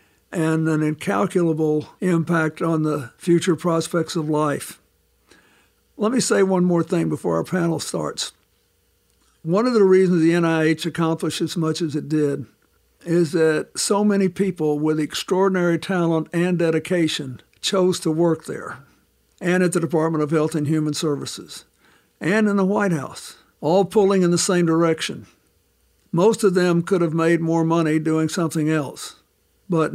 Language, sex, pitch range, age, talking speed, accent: English, male, 155-175 Hz, 60-79, 155 wpm, American